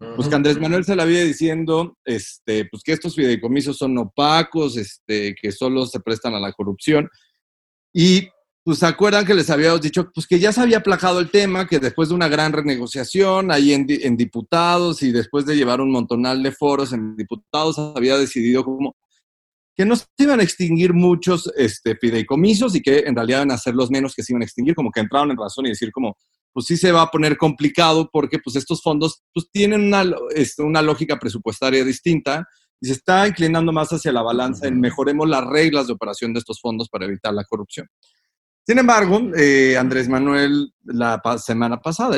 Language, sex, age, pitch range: Spanish, male, 40-59, 125-170 Hz